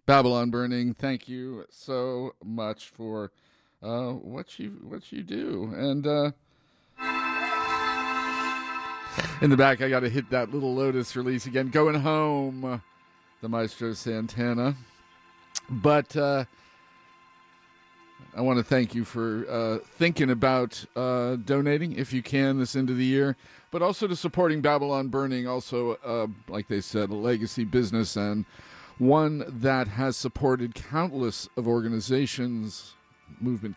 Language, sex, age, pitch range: English, male, 40-59, 115-140 Hz